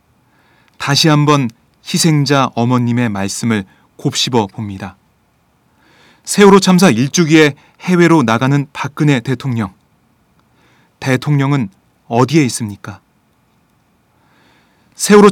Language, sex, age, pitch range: Korean, male, 30-49, 110-150 Hz